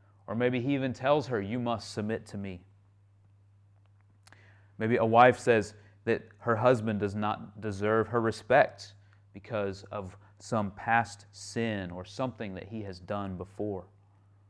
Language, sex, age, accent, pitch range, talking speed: English, male, 30-49, American, 100-115 Hz, 145 wpm